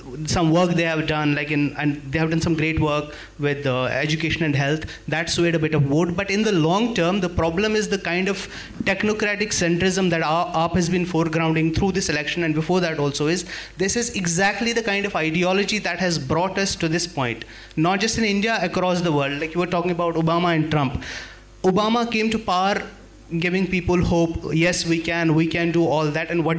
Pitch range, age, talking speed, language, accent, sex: 160-195 Hz, 30-49, 220 wpm, English, Indian, male